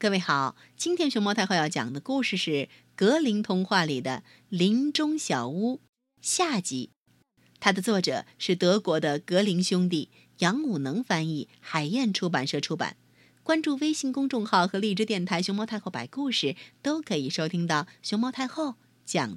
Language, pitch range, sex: Chinese, 160-250 Hz, female